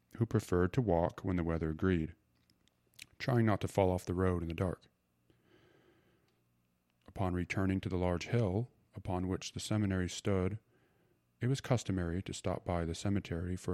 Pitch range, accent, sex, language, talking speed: 75-100 Hz, American, male, English, 165 wpm